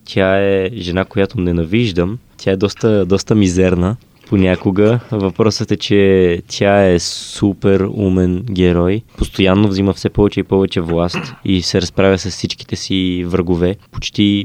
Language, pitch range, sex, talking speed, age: Bulgarian, 90-110 Hz, male, 140 wpm, 20-39